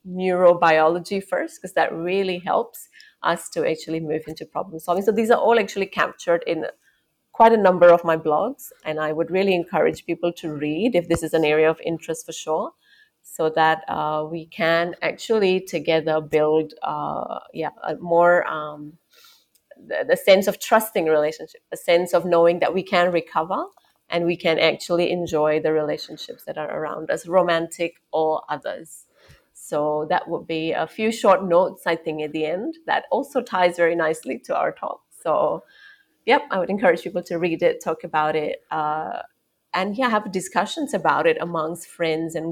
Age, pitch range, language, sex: 30-49, 160-185 Hz, English, female